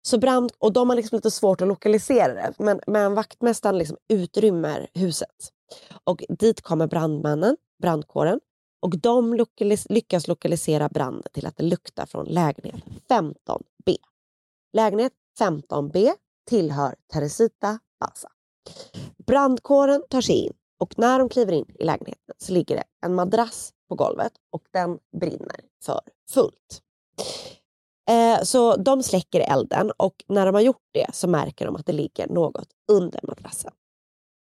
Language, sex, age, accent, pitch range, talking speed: Swedish, female, 20-39, native, 165-235 Hz, 145 wpm